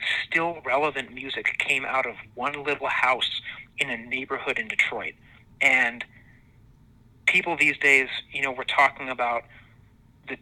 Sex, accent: male, American